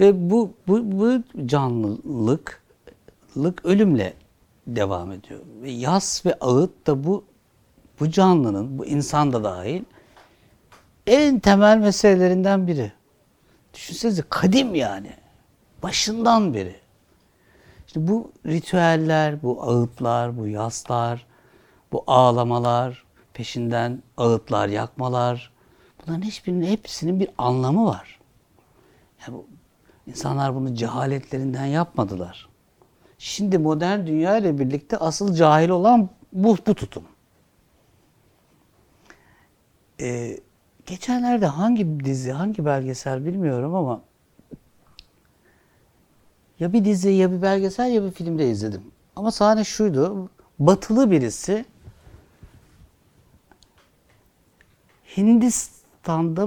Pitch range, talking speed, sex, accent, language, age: 125-200 Hz, 90 wpm, male, native, Turkish, 60-79